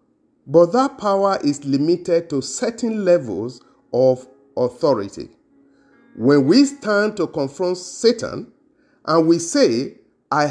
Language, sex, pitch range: English, male, 135-225 Hz